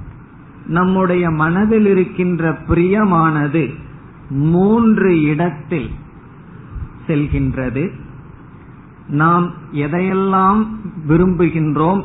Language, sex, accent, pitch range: Tamil, male, native, 135-175 Hz